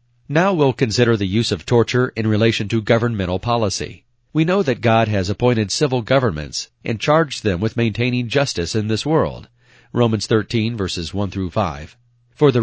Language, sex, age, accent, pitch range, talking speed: English, male, 40-59, American, 100-125 Hz, 175 wpm